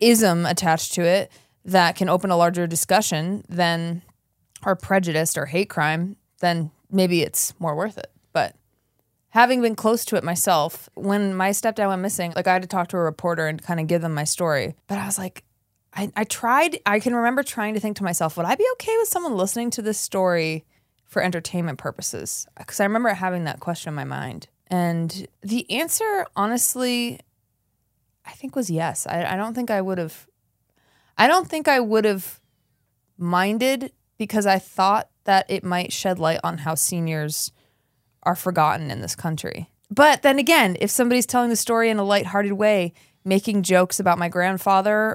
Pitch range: 165-215 Hz